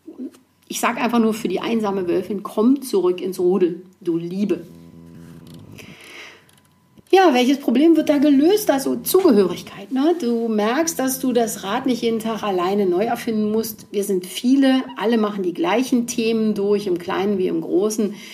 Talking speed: 160 wpm